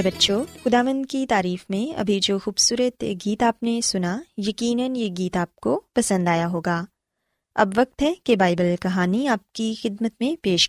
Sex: female